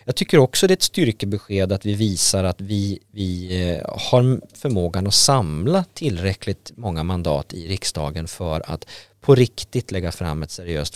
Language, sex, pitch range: Swedish, male, 90-120 Hz